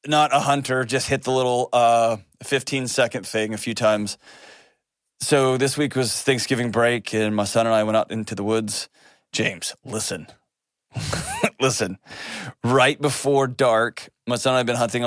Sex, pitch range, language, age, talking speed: male, 110-130 Hz, English, 30-49, 165 wpm